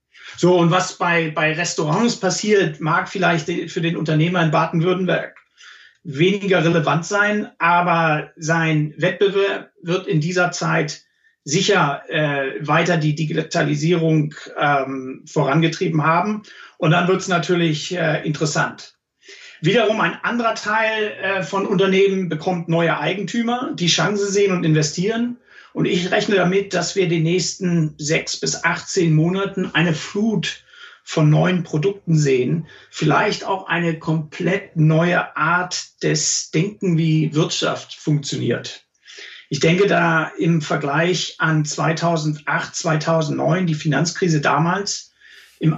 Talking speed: 125 wpm